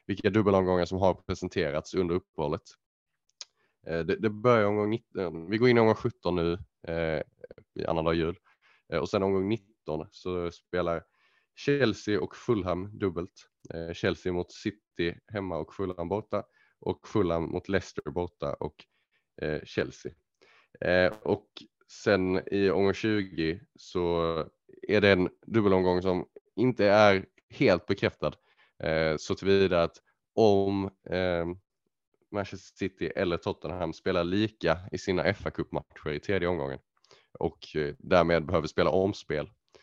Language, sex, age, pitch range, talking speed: Swedish, male, 20-39, 85-100 Hz, 130 wpm